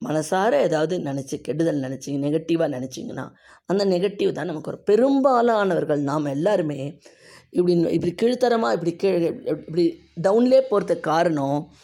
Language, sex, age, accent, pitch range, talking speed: Tamil, female, 20-39, native, 145-210 Hz, 115 wpm